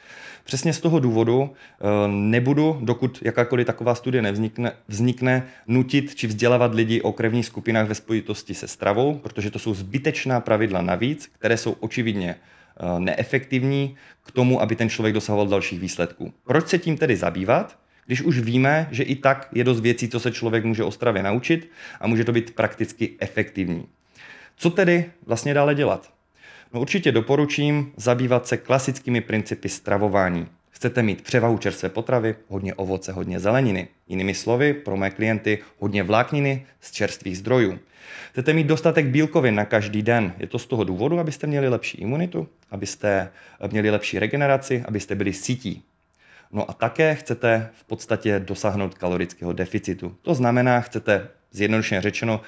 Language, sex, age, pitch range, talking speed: Czech, male, 30-49, 105-135 Hz, 155 wpm